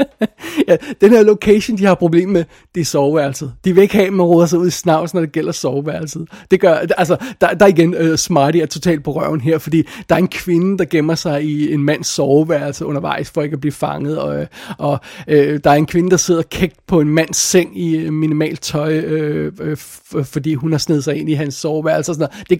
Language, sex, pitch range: Danish, male, 155-185 Hz